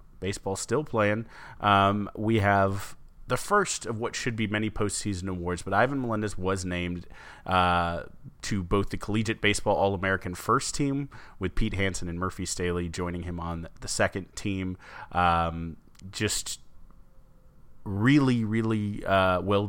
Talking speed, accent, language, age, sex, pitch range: 145 wpm, American, English, 30-49, male, 85-100 Hz